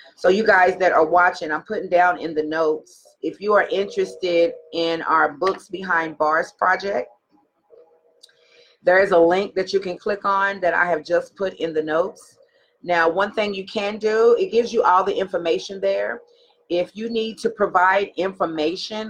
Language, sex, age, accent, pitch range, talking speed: English, female, 40-59, American, 180-285 Hz, 180 wpm